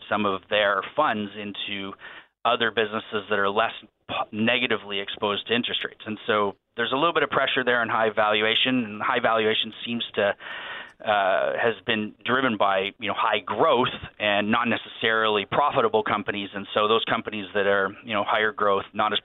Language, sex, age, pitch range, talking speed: English, male, 30-49, 100-115 Hz, 180 wpm